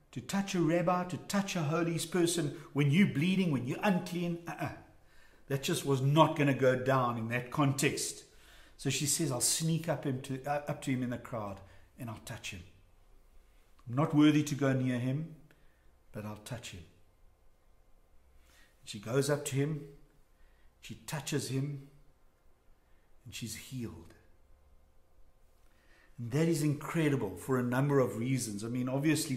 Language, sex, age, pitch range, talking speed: English, male, 60-79, 120-165 Hz, 160 wpm